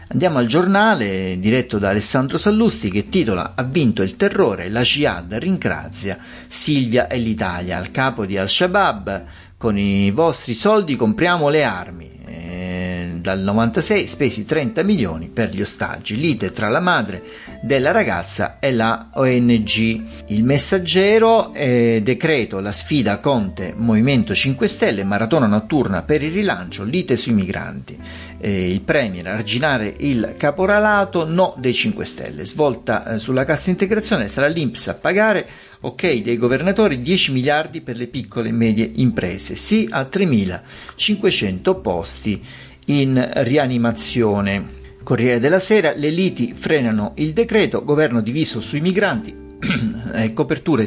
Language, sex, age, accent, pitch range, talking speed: Italian, male, 40-59, native, 105-165 Hz, 135 wpm